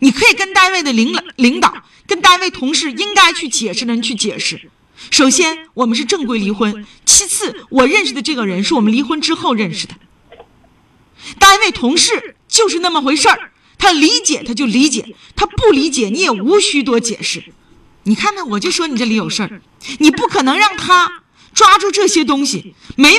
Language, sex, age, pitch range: Chinese, female, 40-59, 235-375 Hz